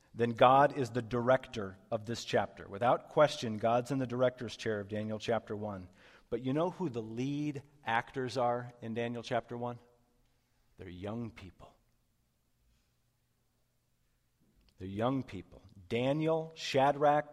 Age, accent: 40-59, American